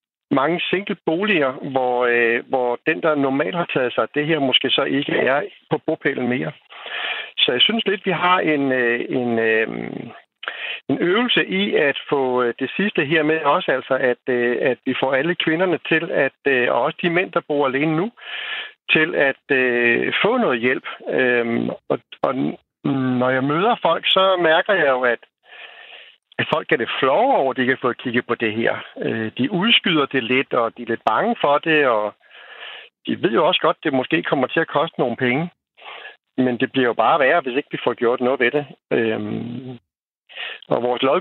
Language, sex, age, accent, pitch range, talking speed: Danish, male, 60-79, native, 125-165 Hz, 185 wpm